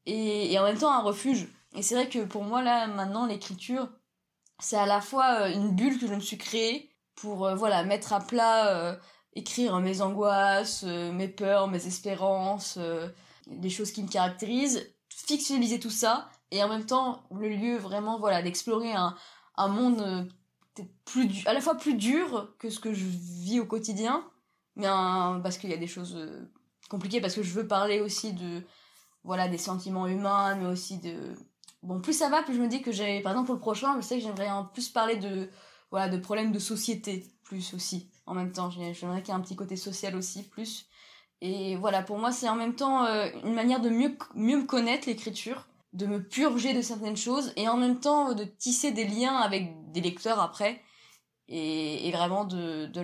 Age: 20-39